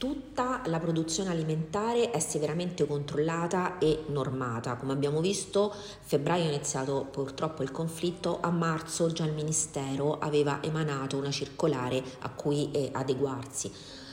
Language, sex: Italian, female